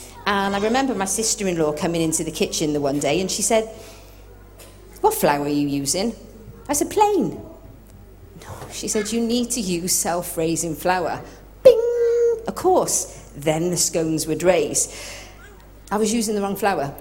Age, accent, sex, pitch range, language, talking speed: 40-59, British, female, 150-220 Hz, English, 160 wpm